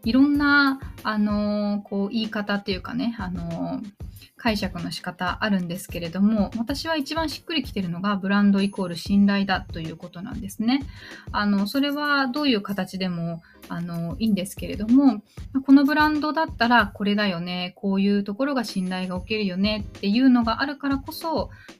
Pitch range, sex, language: 185-265 Hz, female, Japanese